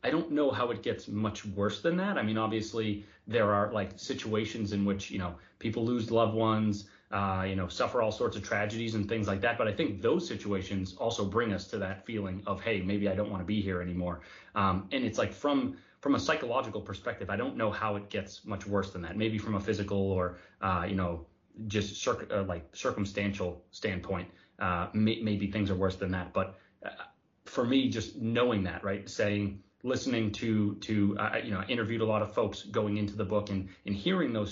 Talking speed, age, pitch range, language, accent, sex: 215 wpm, 30-49, 100-110 Hz, English, American, male